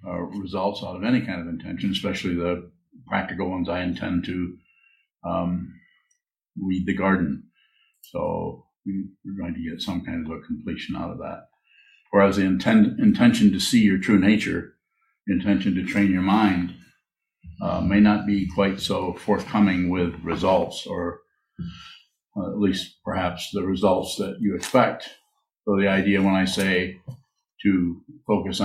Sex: male